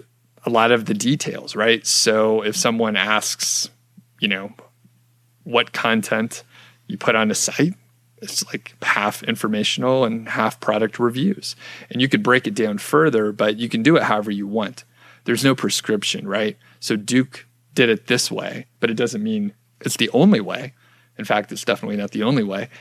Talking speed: 180 wpm